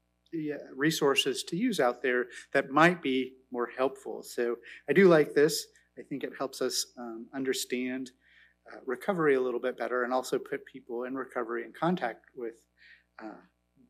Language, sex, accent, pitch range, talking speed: English, male, American, 120-150 Hz, 165 wpm